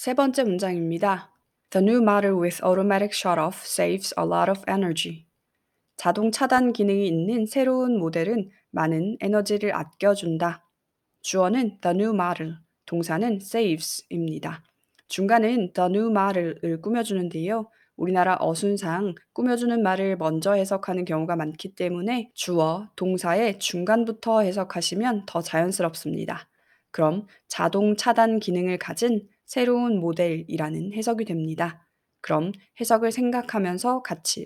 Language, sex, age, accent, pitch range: Korean, female, 20-39, native, 170-215 Hz